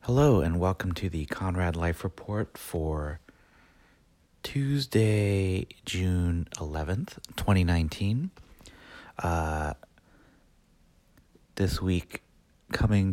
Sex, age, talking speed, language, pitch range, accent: male, 30-49, 80 wpm, English, 80-95 Hz, American